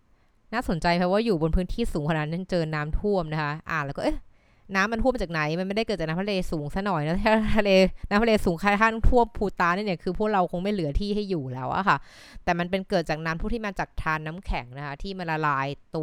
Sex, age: female, 20-39